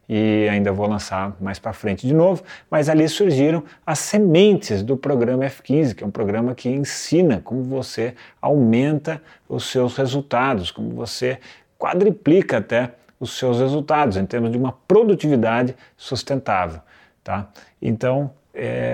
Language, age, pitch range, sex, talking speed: Portuguese, 30-49, 120-170 Hz, male, 135 wpm